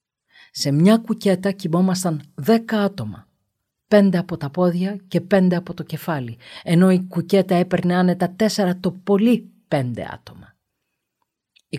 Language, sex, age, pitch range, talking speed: Greek, female, 50-69, 135-190 Hz, 130 wpm